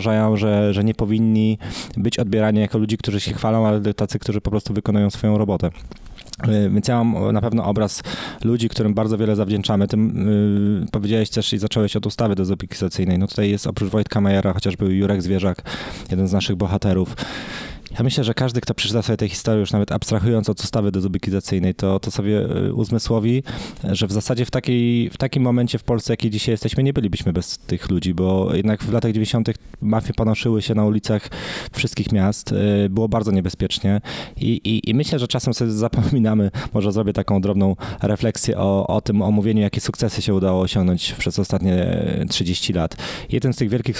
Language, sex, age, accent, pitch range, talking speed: Polish, male, 20-39, native, 100-115 Hz, 185 wpm